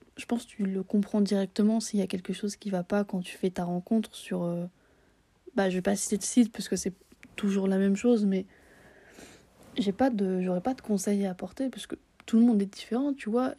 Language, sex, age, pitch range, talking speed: French, female, 20-39, 190-220 Hz, 245 wpm